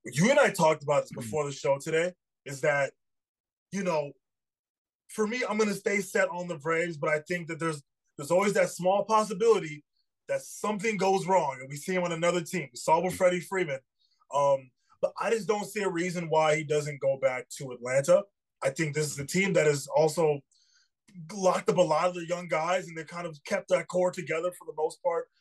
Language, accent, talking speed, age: English, American, 220 wpm, 20-39